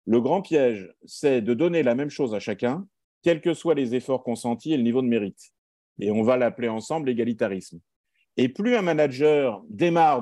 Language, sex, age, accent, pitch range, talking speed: French, male, 50-69, French, 120-170 Hz, 195 wpm